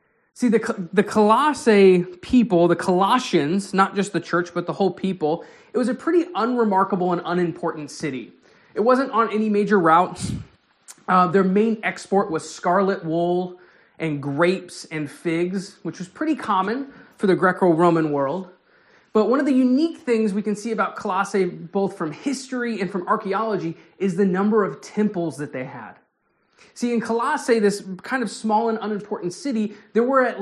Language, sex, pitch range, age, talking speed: English, male, 175-225 Hz, 20-39, 170 wpm